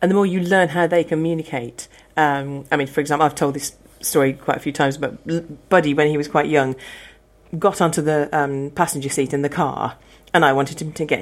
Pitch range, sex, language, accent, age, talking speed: 150-200 Hz, female, English, British, 40-59, 235 wpm